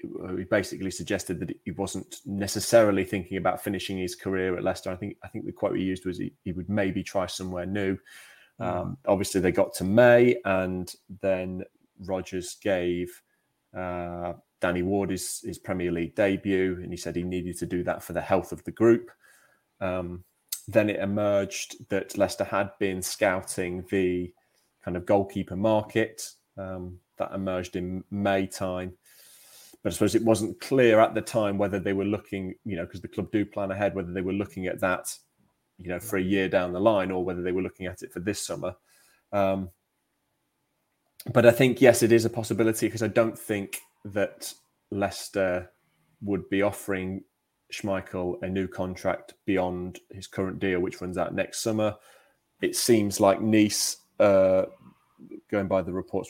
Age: 20-39